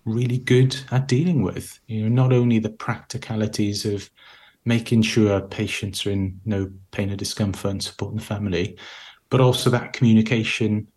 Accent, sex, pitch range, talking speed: British, male, 100-120 Hz, 160 wpm